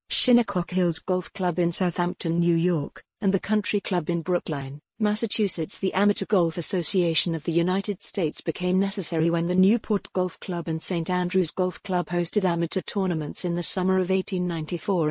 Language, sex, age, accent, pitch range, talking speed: English, female, 50-69, British, 170-200 Hz, 170 wpm